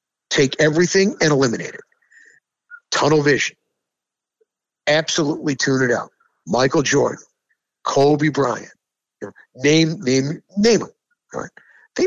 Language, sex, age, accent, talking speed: English, male, 60-79, American, 115 wpm